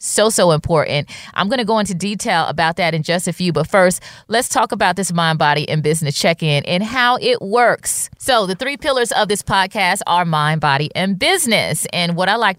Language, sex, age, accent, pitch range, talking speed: English, female, 30-49, American, 140-180 Hz, 225 wpm